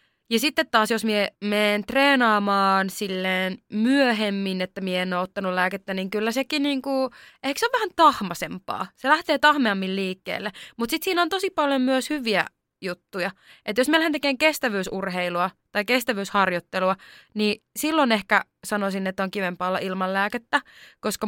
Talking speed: 150 wpm